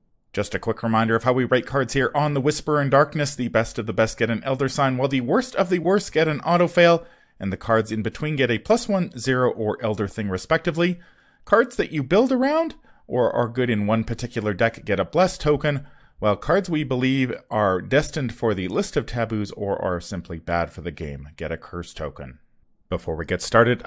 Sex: male